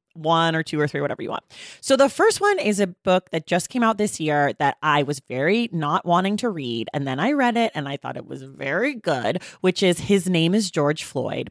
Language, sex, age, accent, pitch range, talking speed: English, female, 30-49, American, 145-195 Hz, 250 wpm